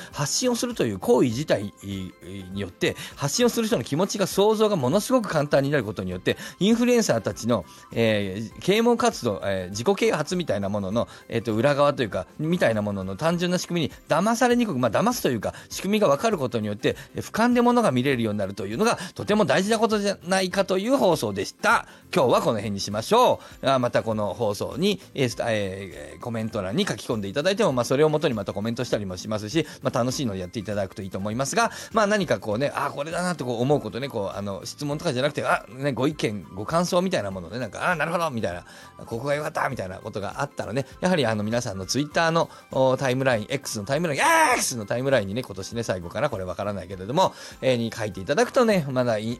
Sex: male